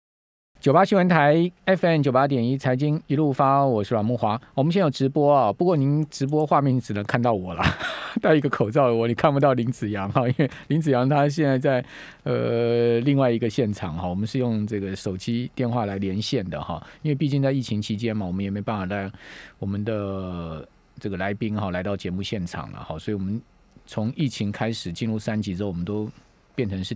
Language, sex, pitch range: Chinese, male, 105-145 Hz